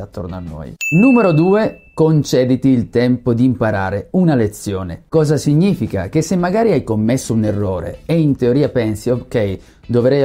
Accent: native